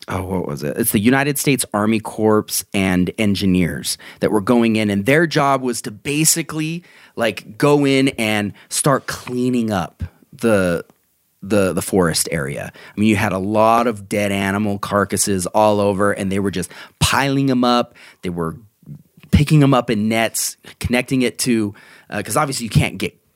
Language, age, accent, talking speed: English, 30-49, American, 175 wpm